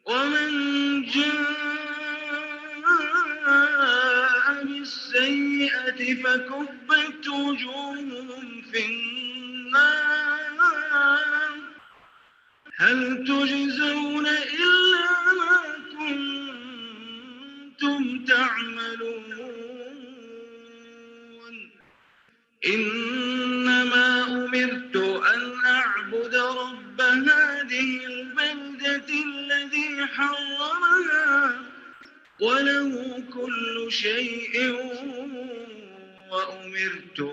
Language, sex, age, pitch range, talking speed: English, male, 40-59, 230-290 Hz, 40 wpm